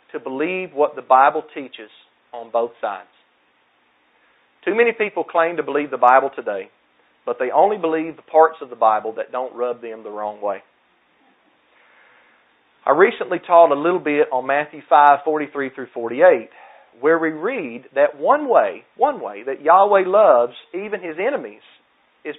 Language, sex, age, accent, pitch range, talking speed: English, male, 40-59, American, 130-175 Hz, 160 wpm